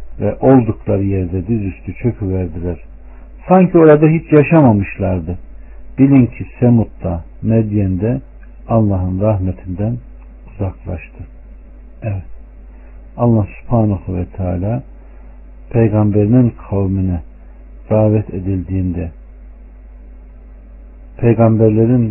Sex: male